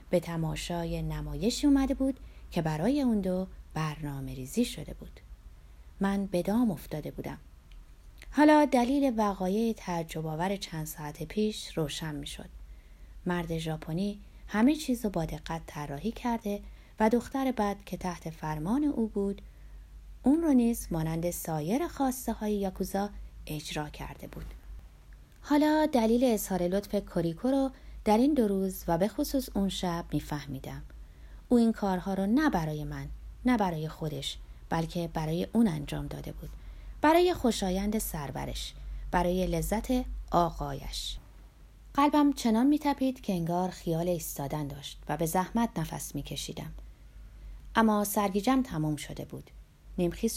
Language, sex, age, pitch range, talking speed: Persian, female, 30-49, 155-225 Hz, 135 wpm